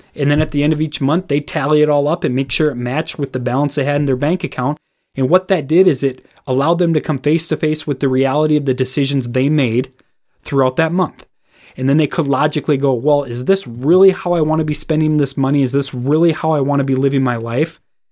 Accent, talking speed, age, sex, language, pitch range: American, 260 wpm, 30-49, male, English, 130-155 Hz